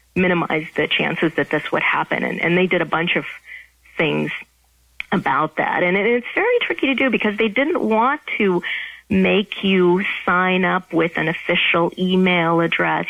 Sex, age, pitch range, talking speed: female, 40-59, 165-225 Hz, 170 wpm